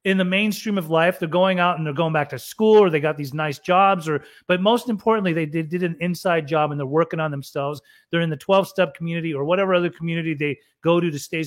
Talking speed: 260 wpm